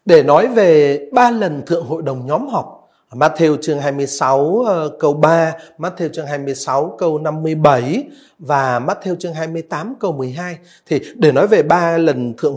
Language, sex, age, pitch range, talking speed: Vietnamese, male, 30-49, 160-240 Hz, 185 wpm